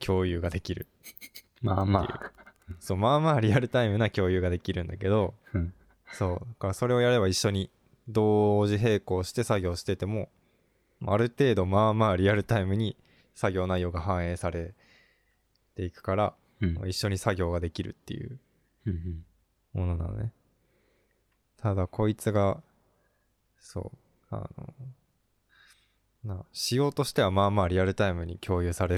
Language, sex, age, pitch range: Japanese, male, 20-39, 90-115 Hz